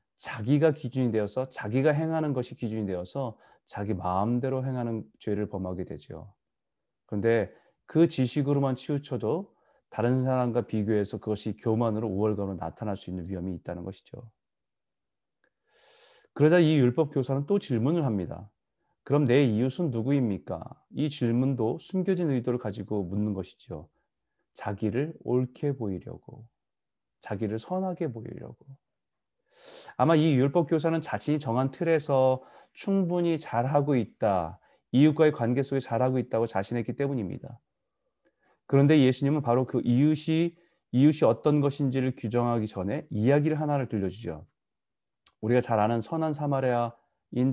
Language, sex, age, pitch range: Korean, male, 30-49, 110-145 Hz